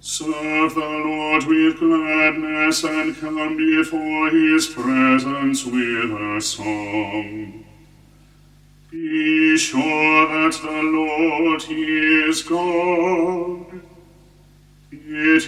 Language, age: English, 40-59